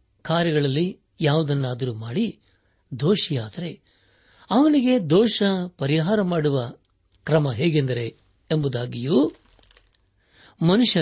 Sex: male